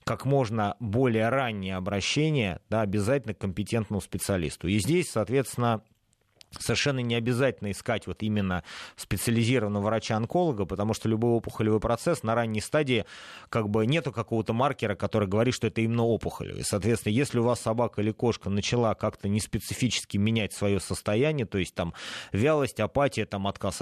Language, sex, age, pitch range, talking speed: Russian, male, 30-49, 105-125 Hz, 155 wpm